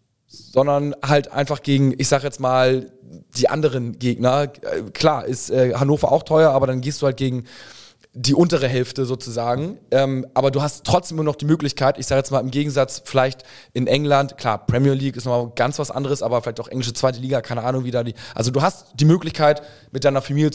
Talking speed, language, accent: 210 wpm, German, German